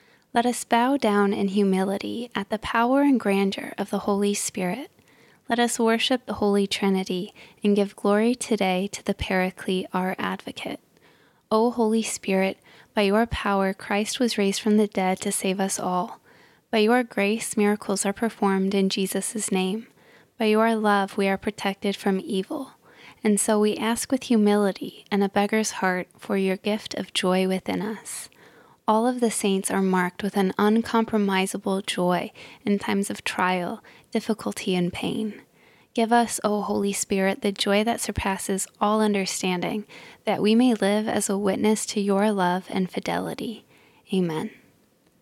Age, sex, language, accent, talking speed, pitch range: 20-39, female, English, American, 160 wpm, 195-225 Hz